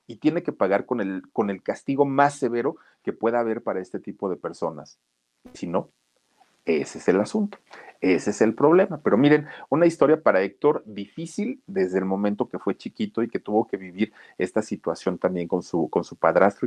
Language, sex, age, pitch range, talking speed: Spanish, male, 40-59, 95-150 Hz, 200 wpm